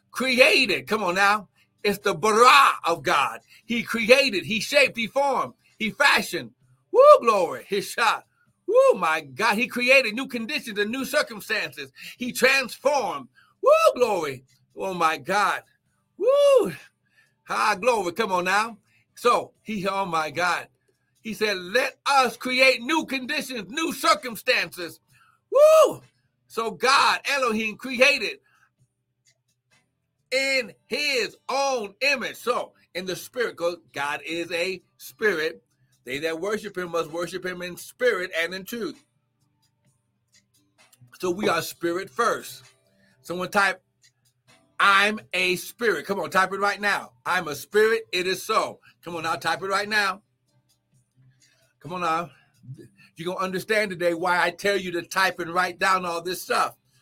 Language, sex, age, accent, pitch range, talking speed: English, male, 60-79, American, 160-245 Hz, 145 wpm